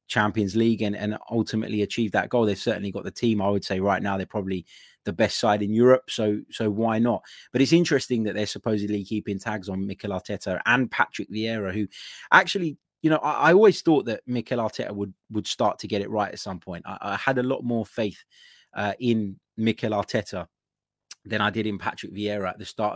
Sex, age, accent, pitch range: male, 20-39, British, 105-120 Hz